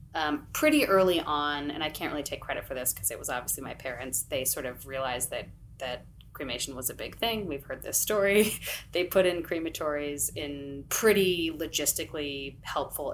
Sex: female